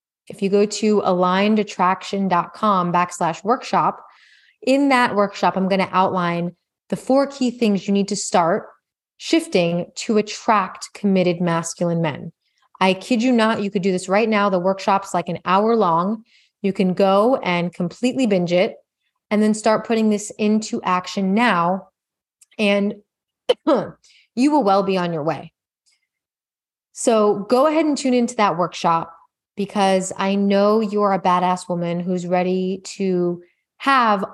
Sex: female